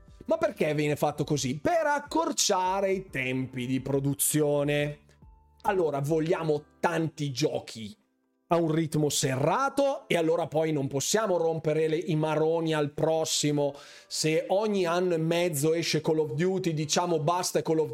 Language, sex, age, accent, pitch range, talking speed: Italian, male, 30-49, native, 135-175 Hz, 140 wpm